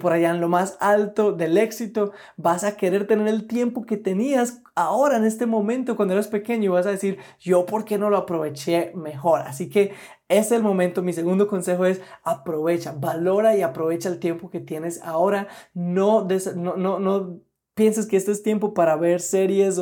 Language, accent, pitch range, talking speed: Spanish, Colombian, 175-220 Hz, 195 wpm